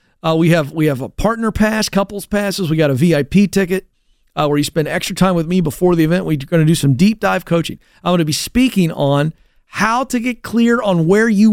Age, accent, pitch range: 40-59, American, 140-190 Hz